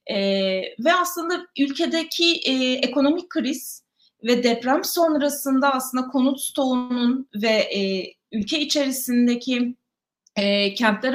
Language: Turkish